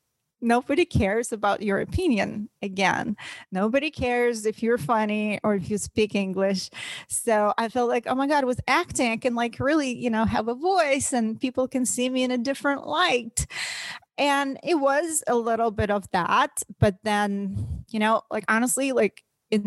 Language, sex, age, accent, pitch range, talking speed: English, female, 30-49, American, 190-250 Hz, 180 wpm